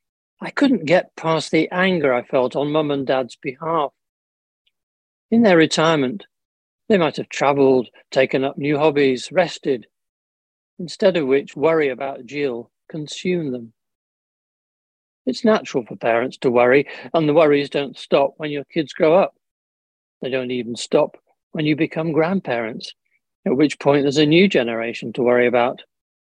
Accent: British